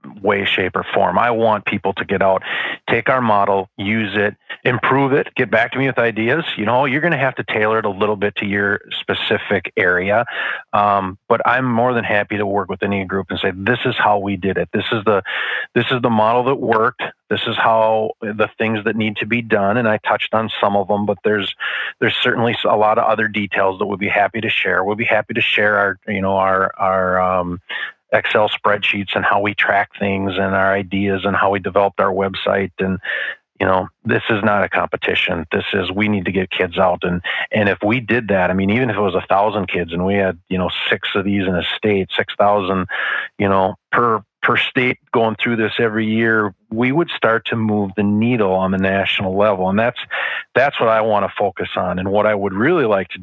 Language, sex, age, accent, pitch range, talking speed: English, male, 40-59, American, 95-110 Hz, 235 wpm